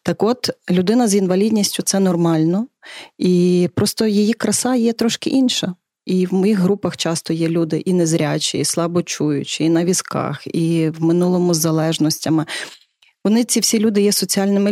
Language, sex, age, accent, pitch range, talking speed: Ukrainian, female, 30-49, native, 160-200 Hz, 165 wpm